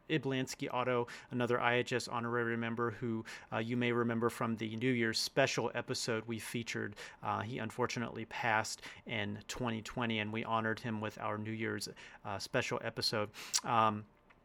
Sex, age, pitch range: male, 40-59, 115-140 Hz